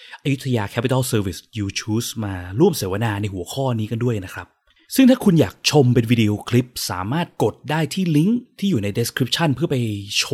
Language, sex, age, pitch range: Thai, male, 20-39, 100-135 Hz